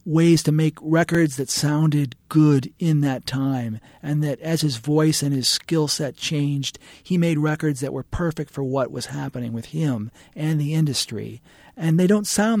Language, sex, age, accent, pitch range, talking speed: English, male, 40-59, American, 135-165 Hz, 185 wpm